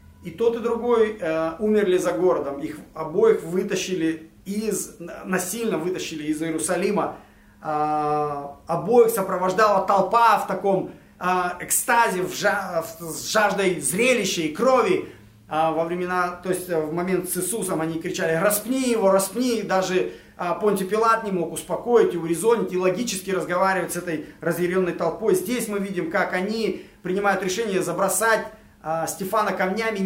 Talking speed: 140 wpm